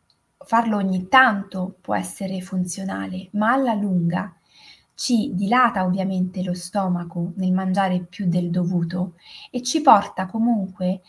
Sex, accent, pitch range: female, native, 185-235 Hz